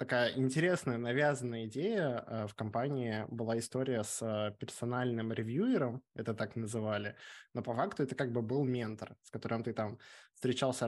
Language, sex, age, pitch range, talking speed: Russian, male, 20-39, 110-130 Hz, 150 wpm